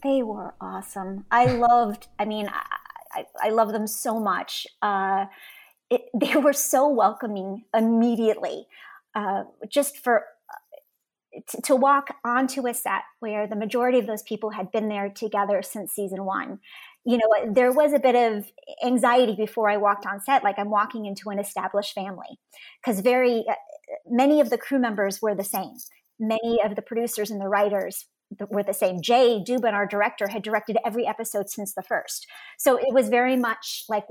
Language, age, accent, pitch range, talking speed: English, 30-49, American, 210-255 Hz, 180 wpm